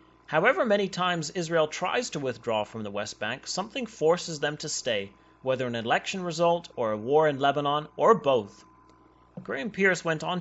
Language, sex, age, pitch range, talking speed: English, male, 30-49, 130-175 Hz, 180 wpm